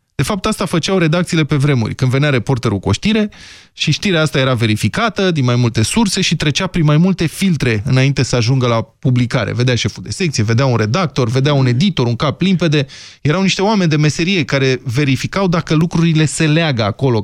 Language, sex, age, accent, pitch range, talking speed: Romanian, male, 20-39, native, 125-175 Hz, 200 wpm